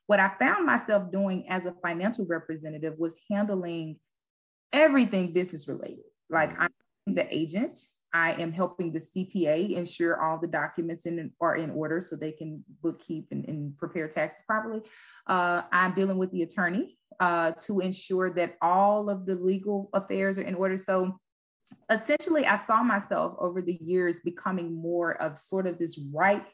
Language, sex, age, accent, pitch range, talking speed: English, female, 20-39, American, 170-200 Hz, 165 wpm